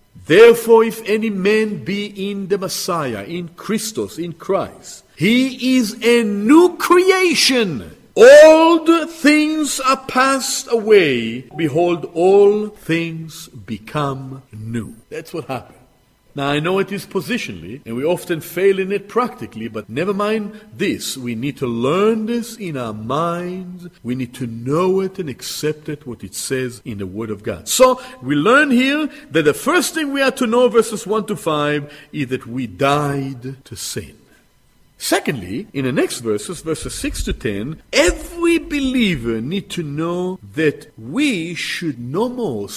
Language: English